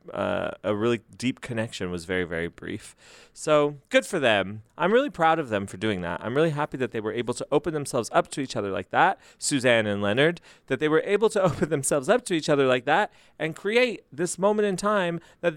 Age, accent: 30-49, American